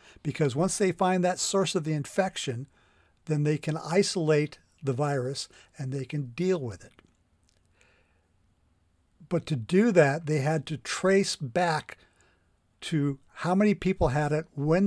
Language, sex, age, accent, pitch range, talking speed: English, male, 50-69, American, 135-175 Hz, 150 wpm